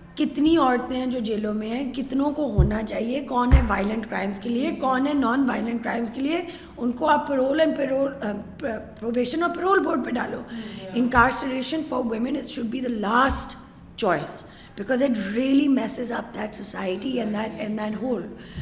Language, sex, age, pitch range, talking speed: Urdu, female, 20-39, 215-260 Hz, 115 wpm